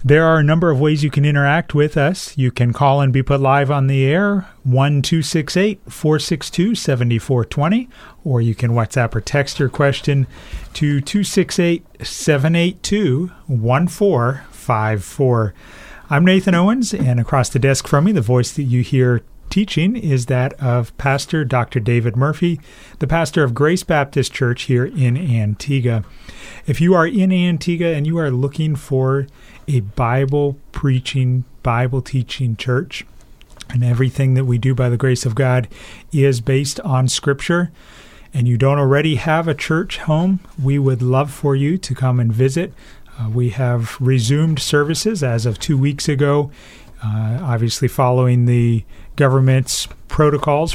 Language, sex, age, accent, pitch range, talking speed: English, male, 40-59, American, 125-150 Hz, 150 wpm